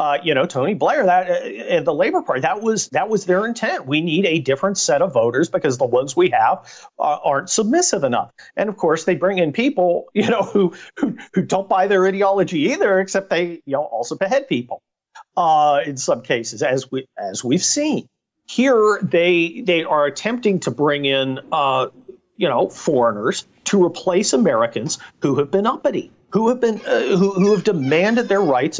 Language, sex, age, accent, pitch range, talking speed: English, male, 50-69, American, 180-255 Hz, 195 wpm